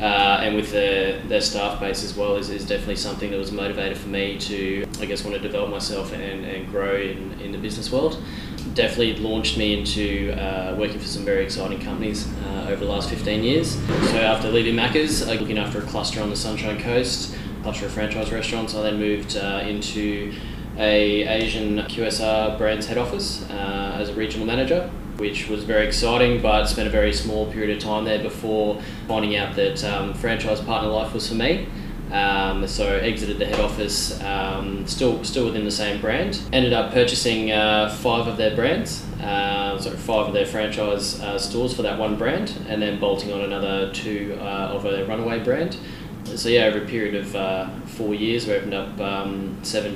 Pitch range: 100-110 Hz